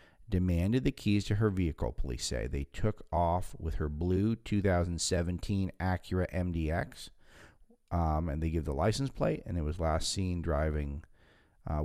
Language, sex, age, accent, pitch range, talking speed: English, male, 50-69, American, 80-105 Hz, 155 wpm